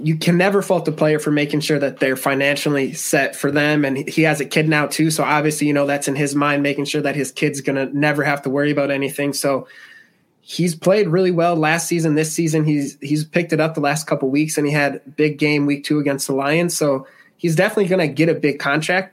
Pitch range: 140-155 Hz